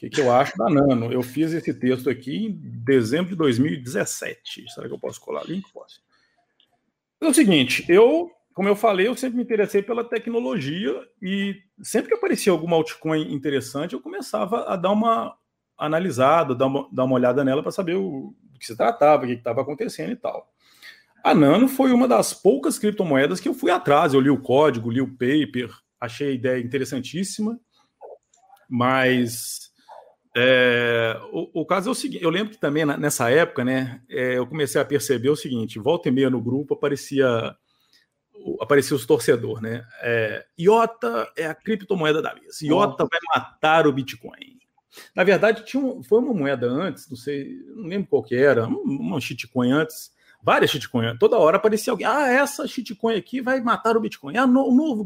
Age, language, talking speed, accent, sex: 40-59, Portuguese, 190 wpm, Brazilian, male